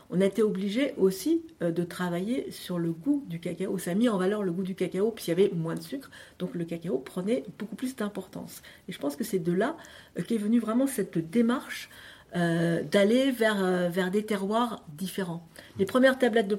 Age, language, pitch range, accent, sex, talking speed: 50-69, French, 175-230 Hz, French, female, 205 wpm